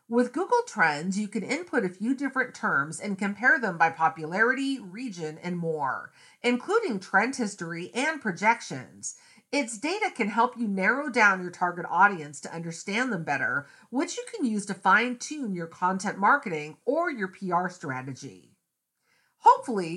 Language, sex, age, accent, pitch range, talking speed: English, female, 40-59, American, 170-260 Hz, 155 wpm